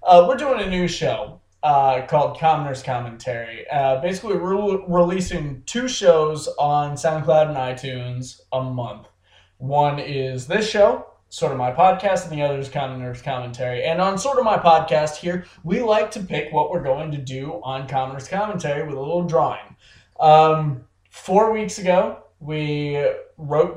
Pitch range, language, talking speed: 130-175 Hz, English, 165 wpm